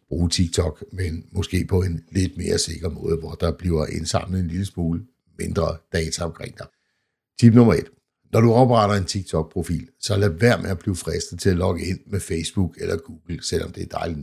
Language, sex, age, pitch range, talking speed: Danish, male, 60-79, 85-100 Hz, 205 wpm